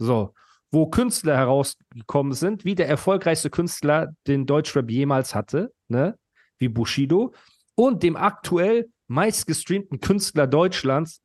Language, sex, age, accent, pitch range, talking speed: German, male, 40-59, German, 135-175 Hz, 115 wpm